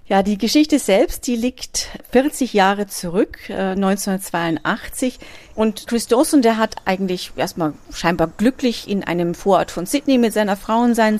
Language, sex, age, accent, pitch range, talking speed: German, female, 40-59, German, 185-230 Hz, 160 wpm